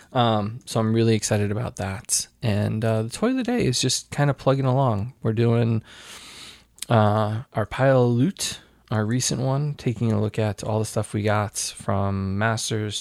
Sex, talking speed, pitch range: male, 190 wpm, 105-125 Hz